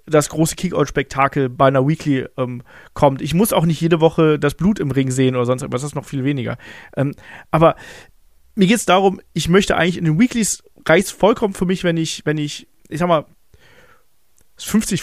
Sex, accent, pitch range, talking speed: male, German, 145-185 Hz, 210 wpm